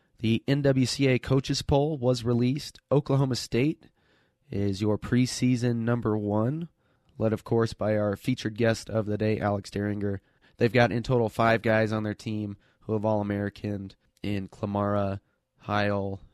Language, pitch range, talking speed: English, 100-115 Hz, 145 wpm